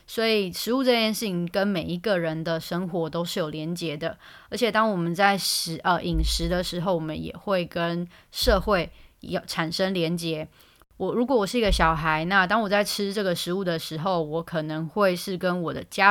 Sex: female